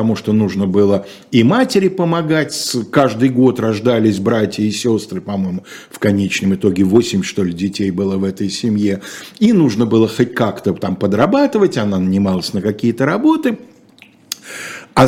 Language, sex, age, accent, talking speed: Russian, male, 50-69, native, 150 wpm